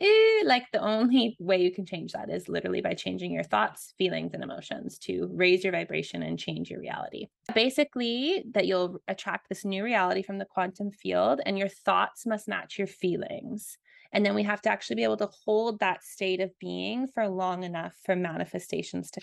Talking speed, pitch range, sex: 195 wpm, 180-225 Hz, female